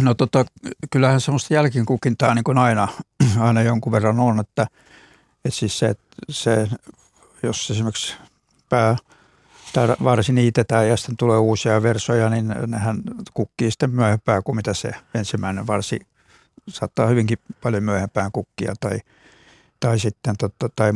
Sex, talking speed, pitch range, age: male, 140 wpm, 110-125 Hz, 60-79